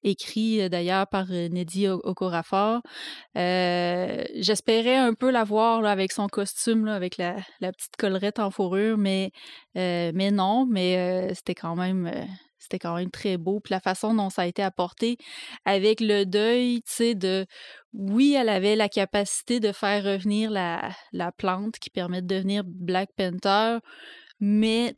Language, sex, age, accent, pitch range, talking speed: French, female, 20-39, Canadian, 185-220 Hz, 155 wpm